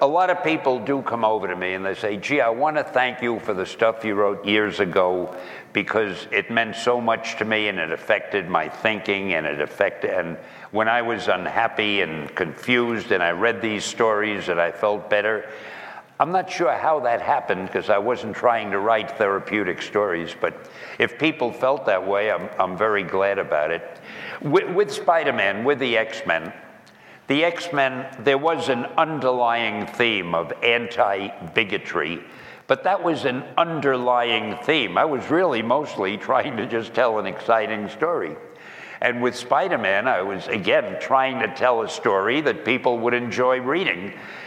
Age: 60-79